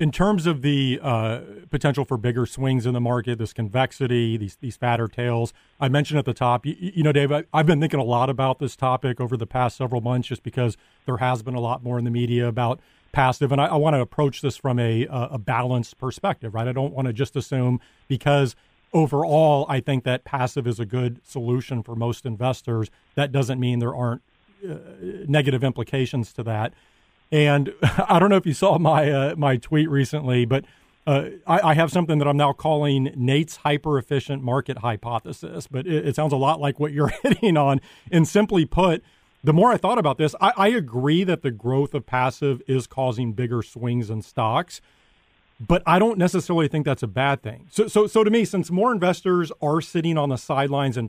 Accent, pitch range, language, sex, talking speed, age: American, 125-155 Hz, English, male, 210 wpm, 40-59